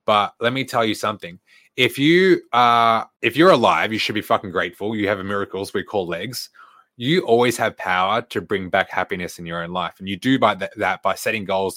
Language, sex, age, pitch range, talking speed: English, male, 20-39, 105-135 Hz, 220 wpm